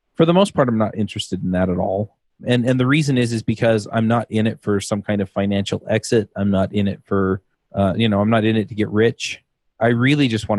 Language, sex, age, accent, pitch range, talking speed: English, male, 30-49, American, 100-115 Hz, 265 wpm